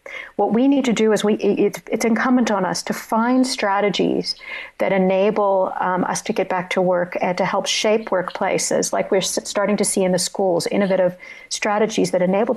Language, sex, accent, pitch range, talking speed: English, female, American, 180-210 Hz, 190 wpm